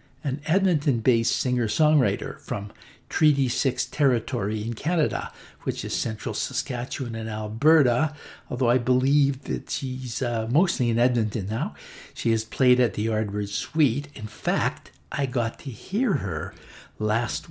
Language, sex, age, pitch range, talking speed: English, male, 60-79, 110-135 Hz, 135 wpm